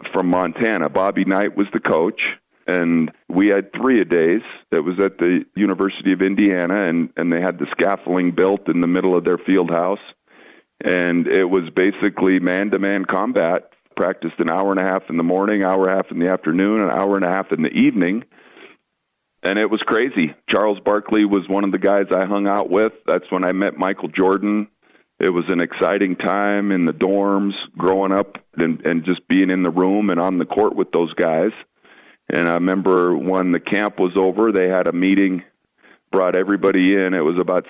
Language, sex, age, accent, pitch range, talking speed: English, male, 40-59, American, 90-100 Hz, 200 wpm